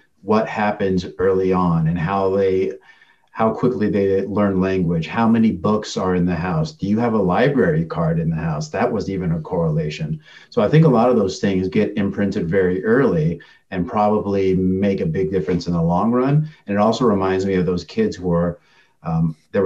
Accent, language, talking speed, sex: American, English, 205 wpm, male